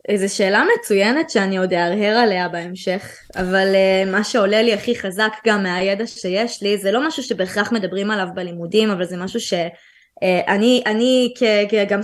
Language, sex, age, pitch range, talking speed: Hebrew, female, 20-39, 190-220 Hz, 160 wpm